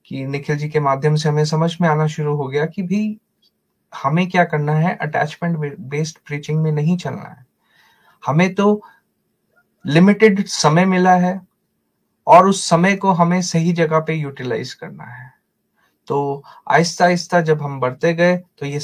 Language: Hindi